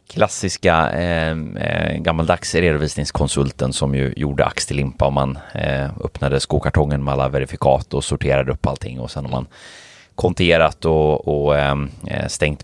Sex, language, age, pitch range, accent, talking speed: male, Swedish, 30-49, 75-90 Hz, native, 145 wpm